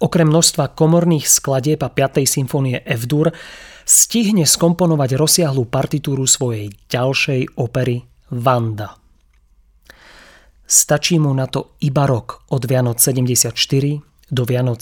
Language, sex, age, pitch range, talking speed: Slovak, male, 30-49, 120-150 Hz, 110 wpm